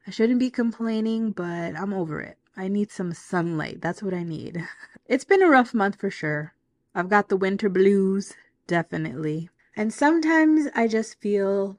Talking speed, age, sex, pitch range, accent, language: 175 wpm, 20-39, female, 180-230 Hz, American, English